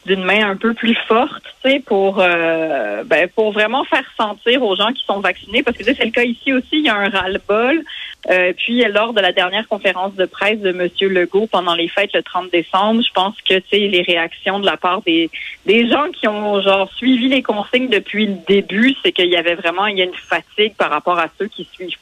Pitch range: 180-220 Hz